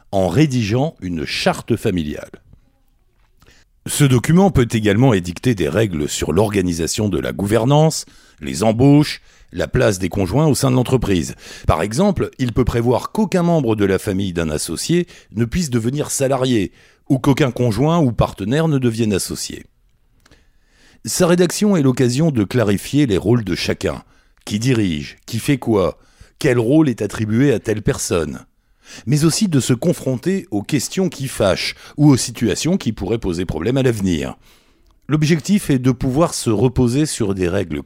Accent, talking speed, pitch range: French, 160 wpm, 100-145 Hz